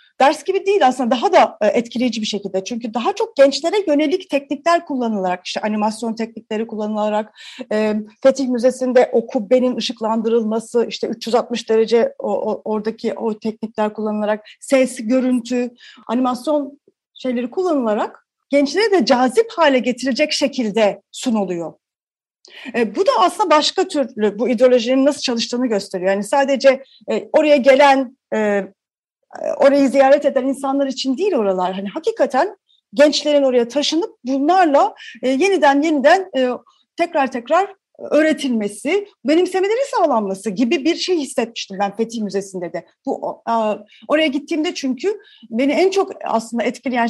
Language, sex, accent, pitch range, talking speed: Turkish, female, native, 225-305 Hz, 120 wpm